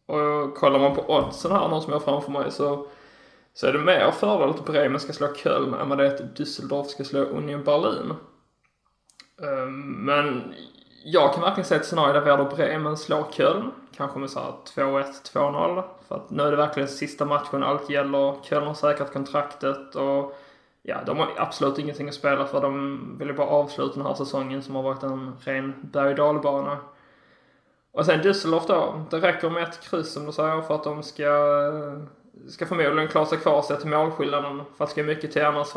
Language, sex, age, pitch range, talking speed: English, male, 20-39, 140-150 Hz, 200 wpm